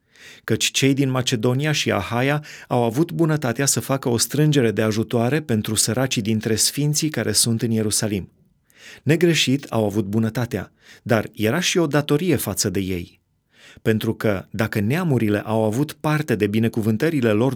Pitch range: 110-140 Hz